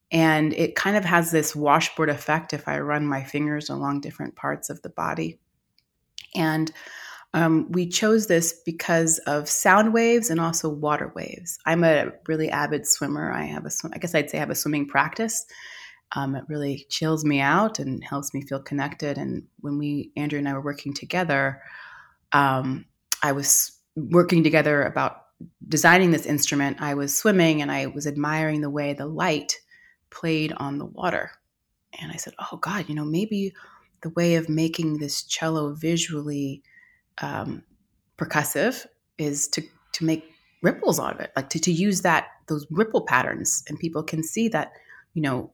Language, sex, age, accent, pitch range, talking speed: English, female, 20-39, American, 145-165 Hz, 175 wpm